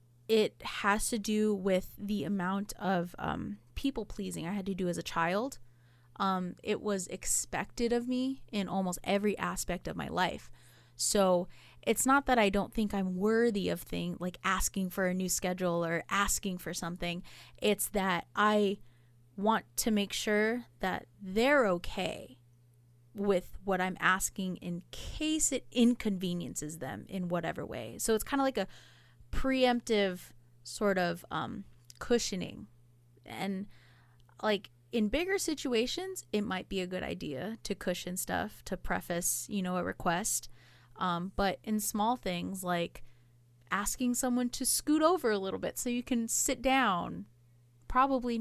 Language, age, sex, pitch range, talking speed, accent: English, 20-39, female, 155-220 Hz, 155 wpm, American